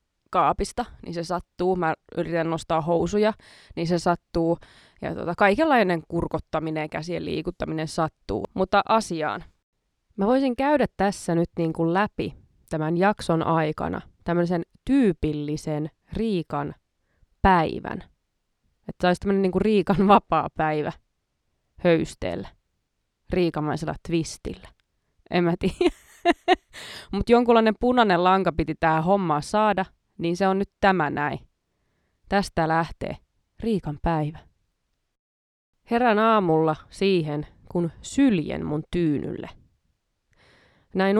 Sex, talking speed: female, 110 wpm